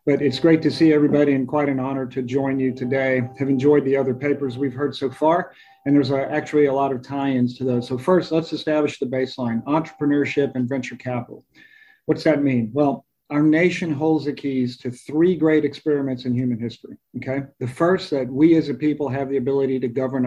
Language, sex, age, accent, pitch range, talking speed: English, male, 40-59, American, 130-145 Hz, 210 wpm